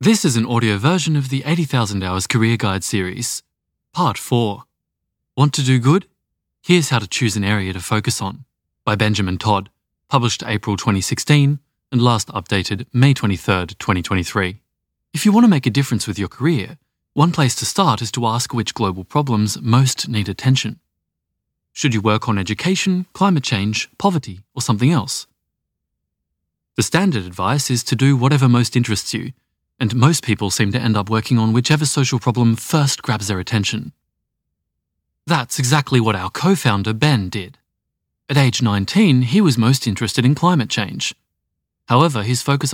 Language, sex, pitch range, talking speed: English, male, 105-140 Hz, 165 wpm